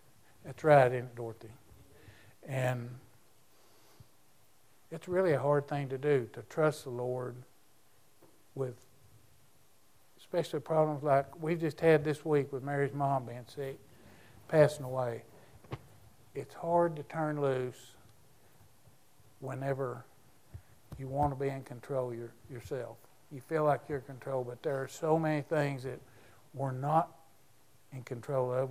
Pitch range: 115-150 Hz